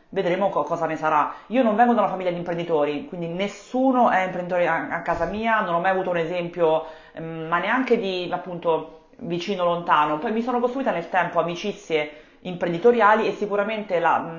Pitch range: 150-175 Hz